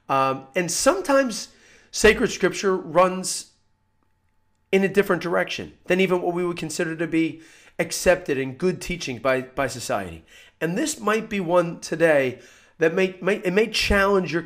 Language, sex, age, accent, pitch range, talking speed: English, male, 40-59, American, 115-180 Hz, 160 wpm